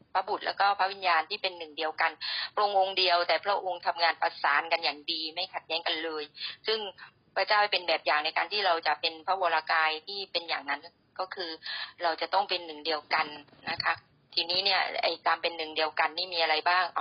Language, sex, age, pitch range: Thai, female, 30-49, 170-210 Hz